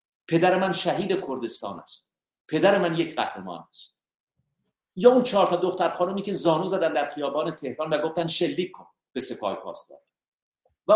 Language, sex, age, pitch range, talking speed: Persian, male, 50-69, 155-200 Hz, 165 wpm